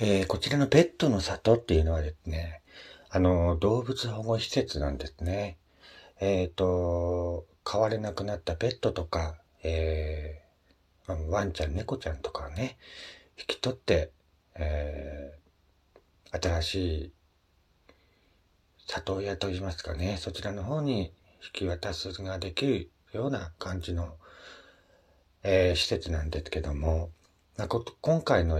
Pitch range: 80-95 Hz